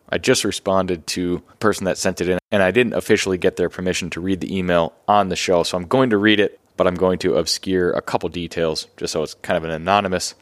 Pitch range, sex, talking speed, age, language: 90-105 Hz, male, 260 wpm, 20-39, English